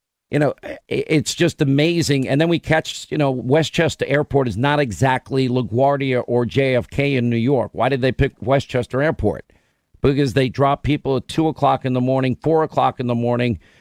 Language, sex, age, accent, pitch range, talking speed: English, male, 50-69, American, 125-145 Hz, 185 wpm